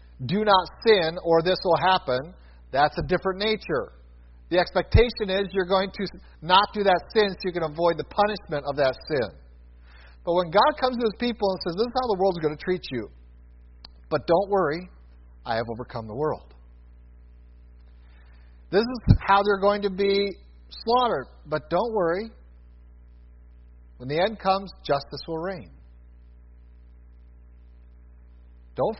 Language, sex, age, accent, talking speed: English, male, 50-69, American, 155 wpm